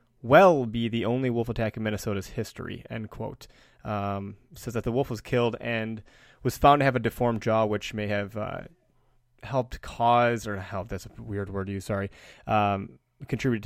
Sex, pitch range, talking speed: male, 100-125 Hz, 185 wpm